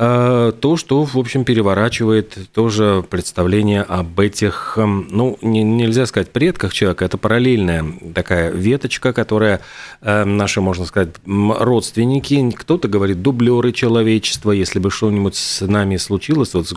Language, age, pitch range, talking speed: Russian, 40-59, 95-125 Hz, 125 wpm